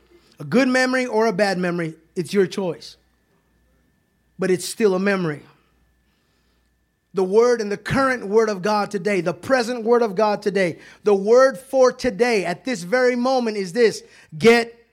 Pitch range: 195-265 Hz